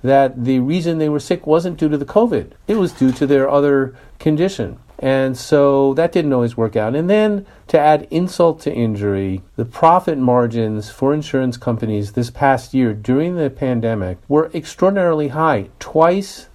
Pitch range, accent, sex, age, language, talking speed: 120-155 Hz, American, male, 50-69, English, 175 wpm